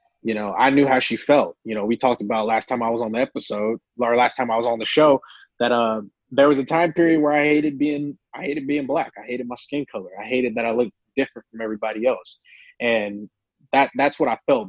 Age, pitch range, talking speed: 20-39, 110-140 Hz, 255 wpm